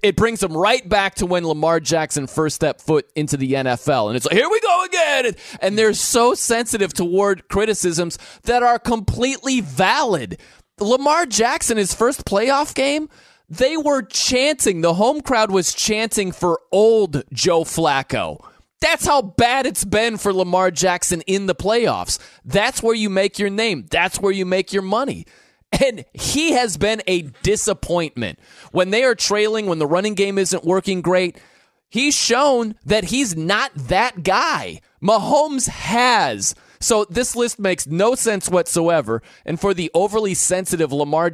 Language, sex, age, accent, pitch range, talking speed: English, male, 30-49, American, 175-230 Hz, 165 wpm